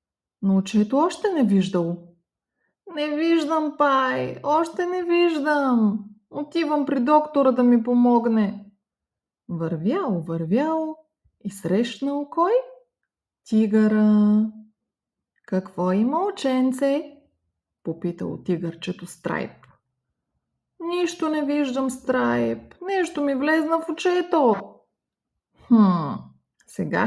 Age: 20-39